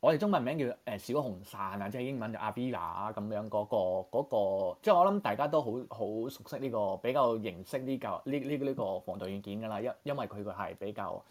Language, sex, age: Chinese, male, 20-39